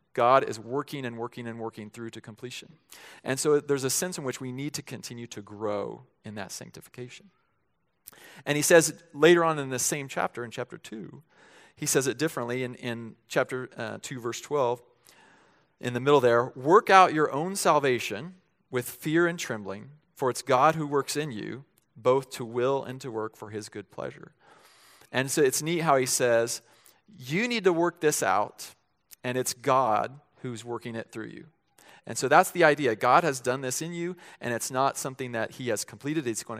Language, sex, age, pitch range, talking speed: English, male, 40-59, 120-150 Hz, 200 wpm